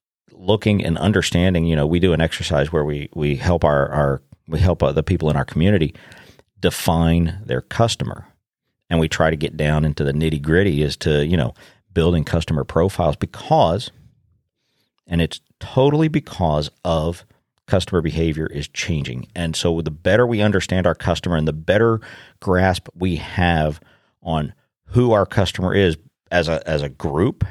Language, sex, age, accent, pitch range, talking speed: English, male, 40-59, American, 80-105 Hz, 165 wpm